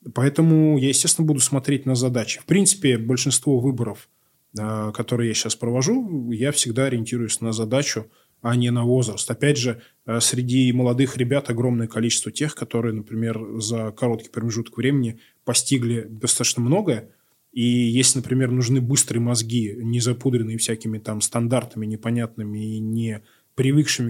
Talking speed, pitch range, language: 140 wpm, 115-135 Hz, Russian